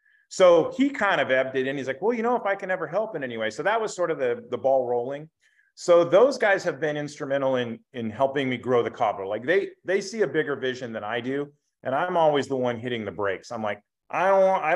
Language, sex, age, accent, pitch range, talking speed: English, male, 30-49, American, 125-165 Hz, 270 wpm